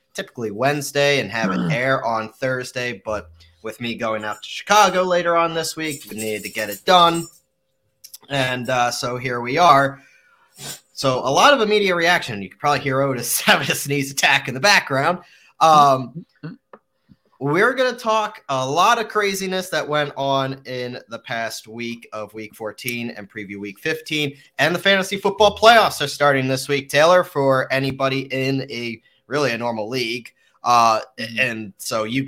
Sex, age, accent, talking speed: male, 30-49, American, 175 wpm